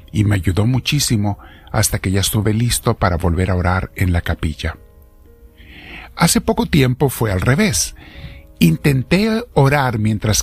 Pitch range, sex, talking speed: 80-115 Hz, male, 145 wpm